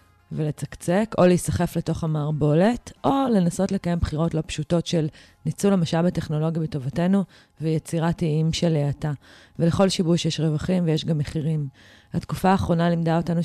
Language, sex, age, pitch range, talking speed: Hebrew, female, 20-39, 150-170 Hz, 140 wpm